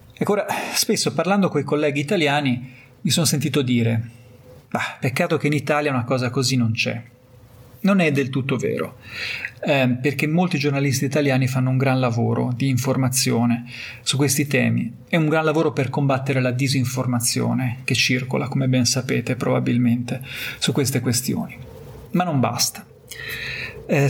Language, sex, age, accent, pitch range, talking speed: Italian, male, 30-49, native, 125-150 Hz, 155 wpm